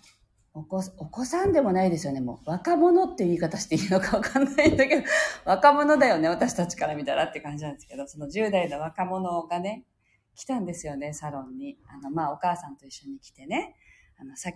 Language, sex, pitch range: Japanese, female, 145-205 Hz